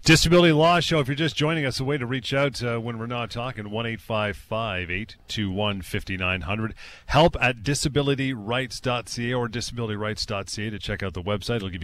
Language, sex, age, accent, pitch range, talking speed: English, male, 40-59, American, 105-135 Hz, 165 wpm